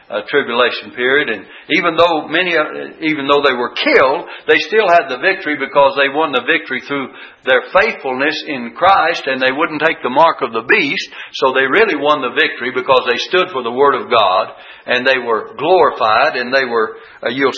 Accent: American